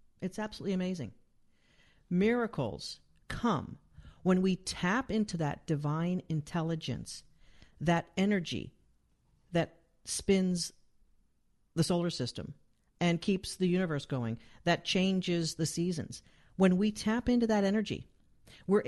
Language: English